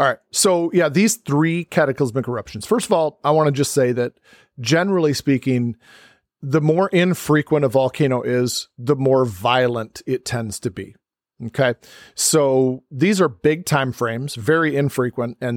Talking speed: 160 wpm